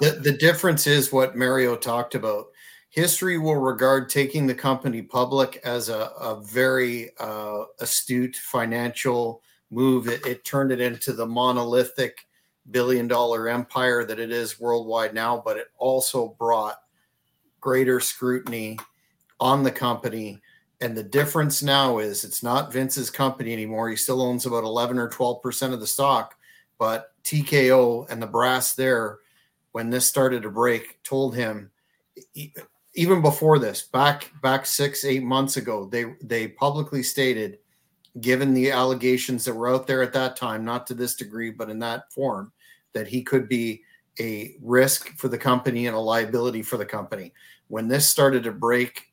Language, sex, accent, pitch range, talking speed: English, male, American, 115-135 Hz, 160 wpm